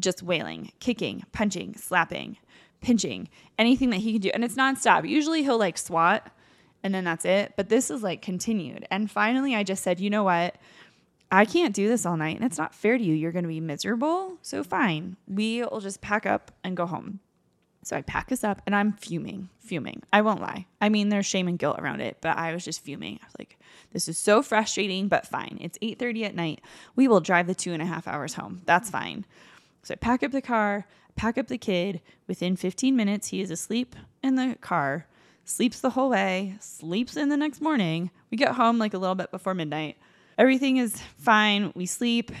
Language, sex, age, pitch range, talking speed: English, female, 20-39, 180-230 Hz, 220 wpm